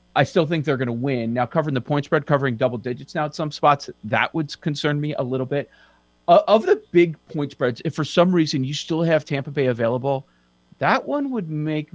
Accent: American